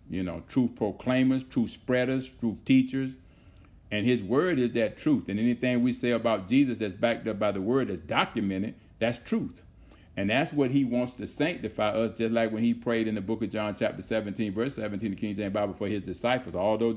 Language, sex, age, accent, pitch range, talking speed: English, male, 50-69, American, 100-125 Hz, 210 wpm